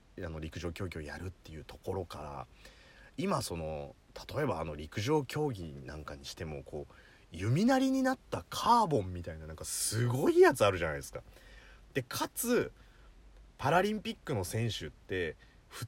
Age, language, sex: 30-49, Japanese, male